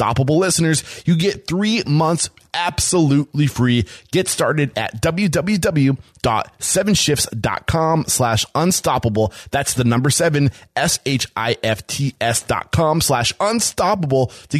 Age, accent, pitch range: 20-39, American, 115-160 Hz